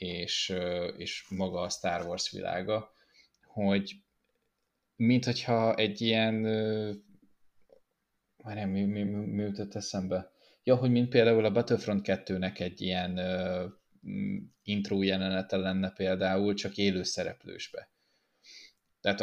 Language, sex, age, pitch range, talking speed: Hungarian, male, 20-39, 90-105 Hz, 110 wpm